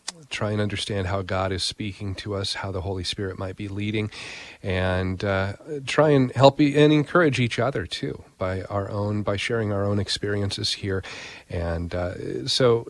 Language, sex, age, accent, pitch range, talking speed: English, male, 40-59, American, 95-120 Hz, 175 wpm